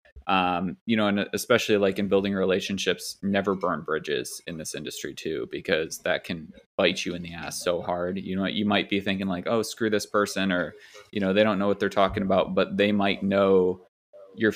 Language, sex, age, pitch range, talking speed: English, male, 20-39, 90-100 Hz, 215 wpm